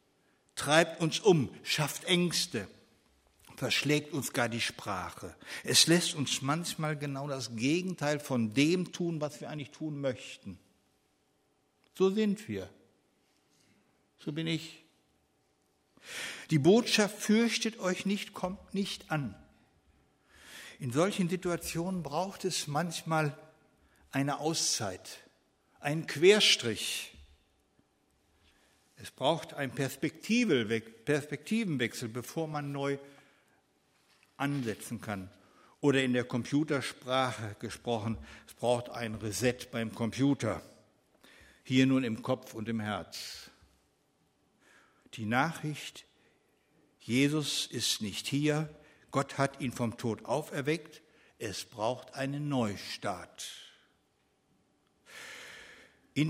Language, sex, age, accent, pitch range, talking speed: German, male, 60-79, German, 115-160 Hz, 100 wpm